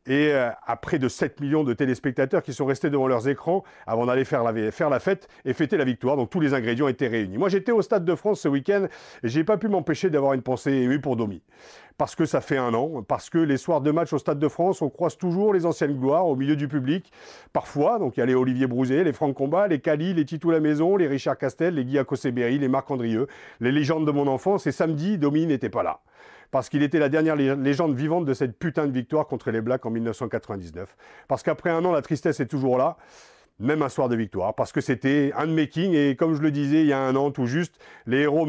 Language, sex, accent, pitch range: French, male, French, 130-160 Hz